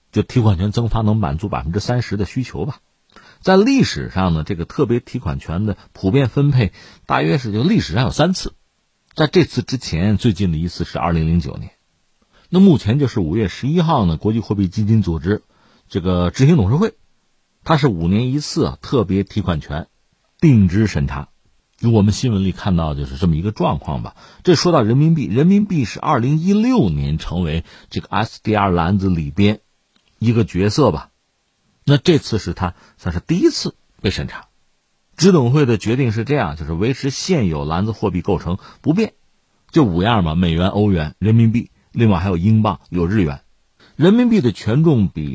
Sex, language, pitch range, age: male, Chinese, 90-135 Hz, 50-69